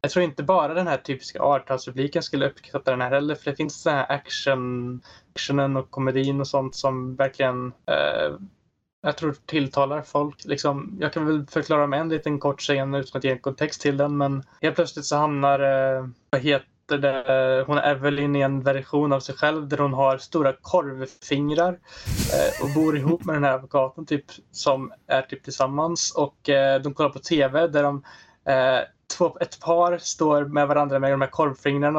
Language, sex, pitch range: Swedish, male, 140-150 Hz